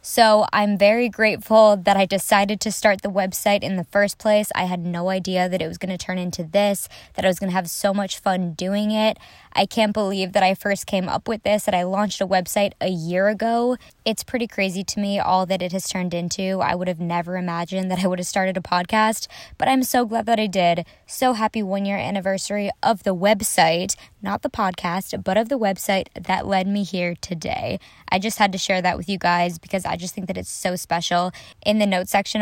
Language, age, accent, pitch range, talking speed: English, 20-39, American, 185-210 Hz, 235 wpm